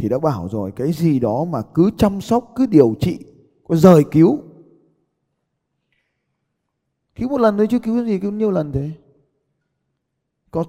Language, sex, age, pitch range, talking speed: Vietnamese, male, 20-39, 105-170 Hz, 170 wpm